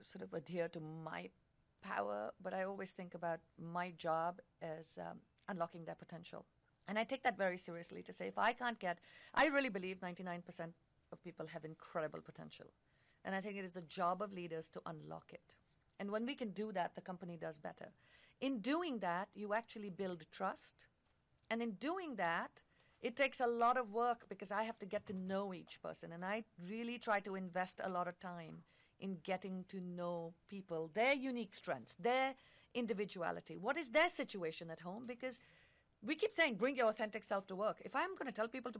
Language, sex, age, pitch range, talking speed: English, female, 50-69, 175-230 Hz, 200 wpm